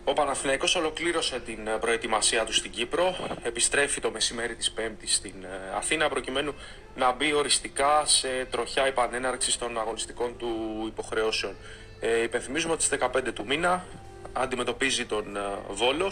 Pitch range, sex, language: 105-130 Hz, male, Greek